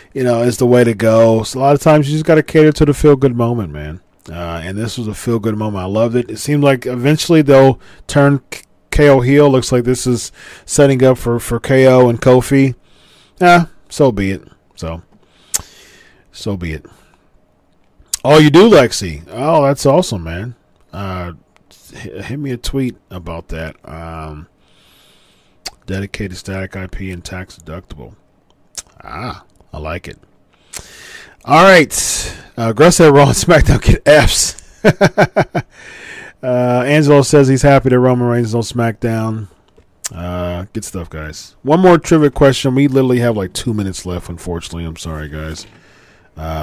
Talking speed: 160 wpm